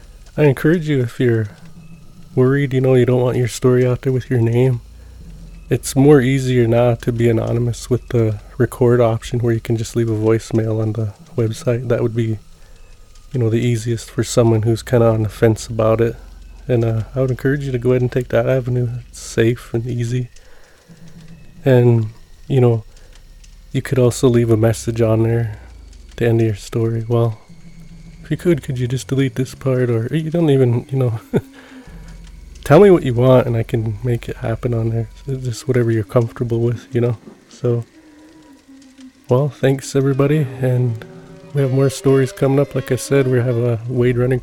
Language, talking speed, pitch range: English, 195 wpm, 115-135 Hz